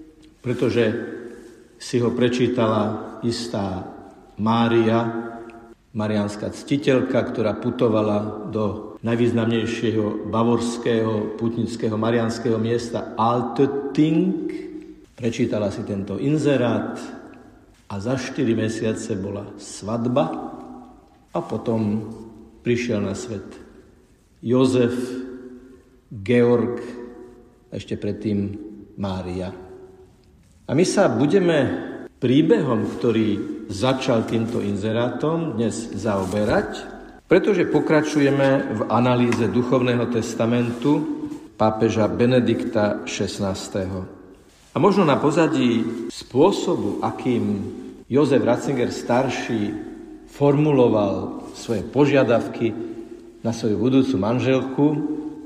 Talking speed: 80 wpm